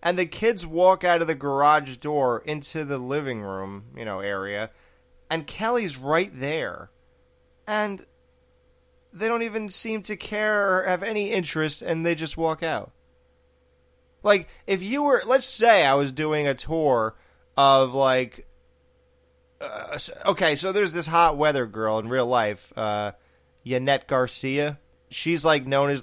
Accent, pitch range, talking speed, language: American, 105-155 Hz, 155 wpm, English